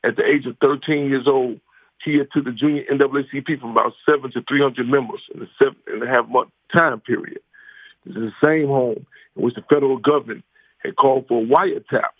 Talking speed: 190 wpm